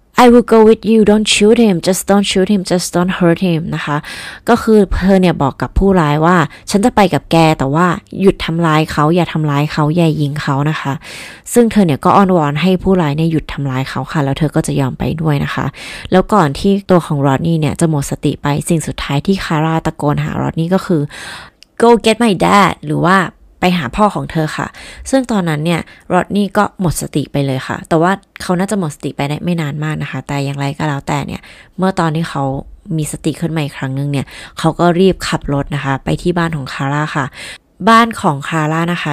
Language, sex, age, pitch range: Thai, female, 20-39, 145-185 Hz